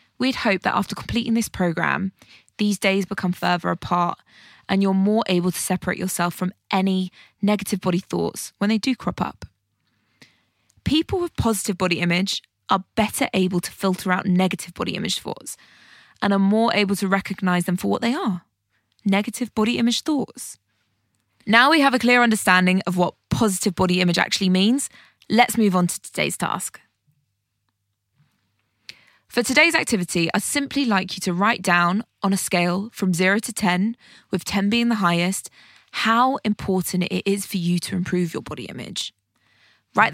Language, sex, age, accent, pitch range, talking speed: English, female, 20-39, British, 175-220 Hz, 165 wpm